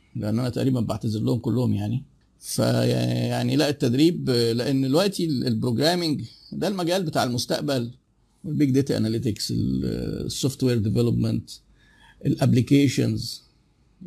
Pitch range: 120-155 Hz